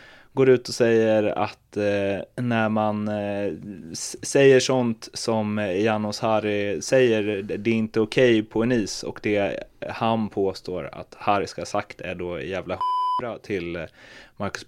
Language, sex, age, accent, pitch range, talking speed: Swedish, male, 20-39, native, 105-120 Hz, 150 wpm